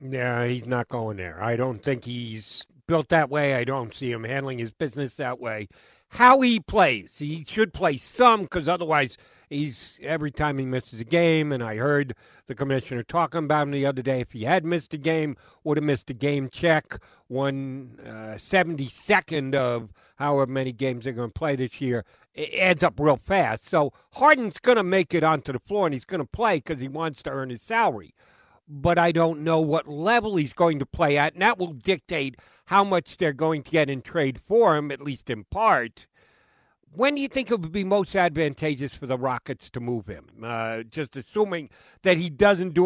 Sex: male